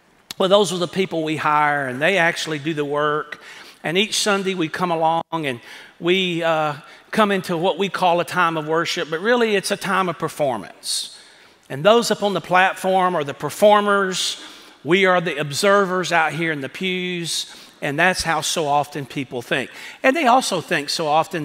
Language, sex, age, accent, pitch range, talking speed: English, male, 40-59, American, 155-190 Hz, 195 wpm